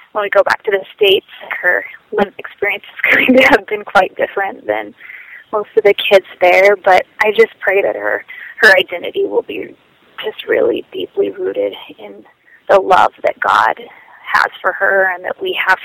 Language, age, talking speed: English, 20-39, 185 wpm